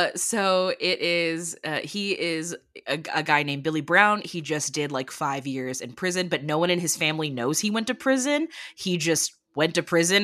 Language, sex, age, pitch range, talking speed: English, female, 20-39, 145-195 Hz, 215 wpm